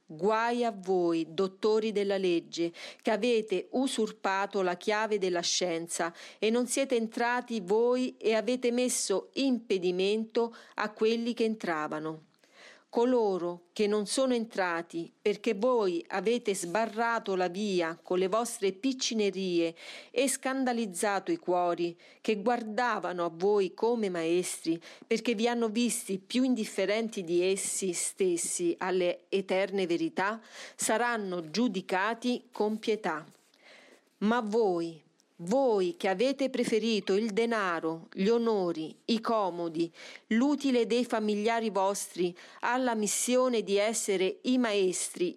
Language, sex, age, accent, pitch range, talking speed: Italian, female, 40-59, native, 185-235 Hz, 120 wpm